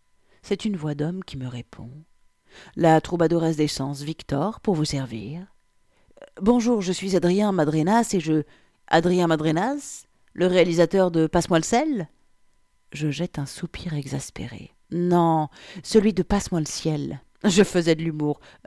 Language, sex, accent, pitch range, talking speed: French, female, French, 150-190 Hz, 150 wpm